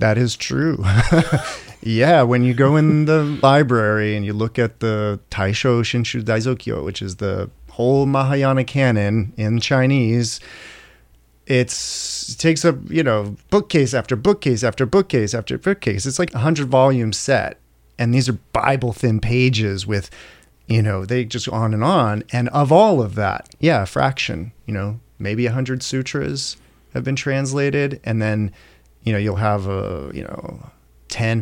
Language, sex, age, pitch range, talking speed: English, male, 30-49, 105-130 Hz, 165 wpm